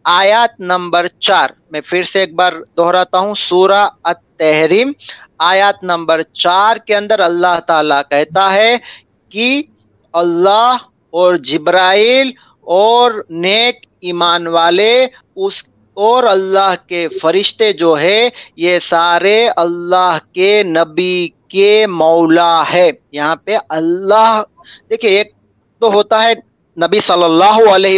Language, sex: Urdu, male